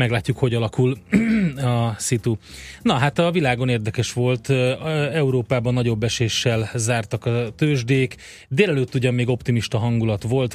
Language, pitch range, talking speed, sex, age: Hungarian, 110-125 Hz, 130 wpm, male, 30-49